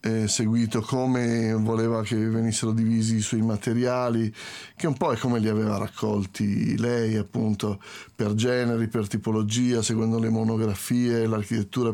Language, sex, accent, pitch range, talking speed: Italian, male, native, 110-125 Hz, 140 wpm